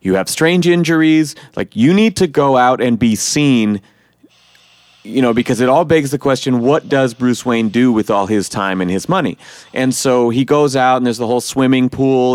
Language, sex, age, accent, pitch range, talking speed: English, male, 30-49, American, 110-140 Hz, 215 wpm